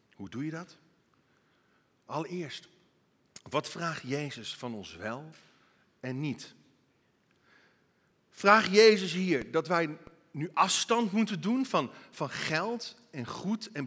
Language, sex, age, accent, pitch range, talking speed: Dutch, male, 50-69, Dutch, 165-225 Hz, 120 wpm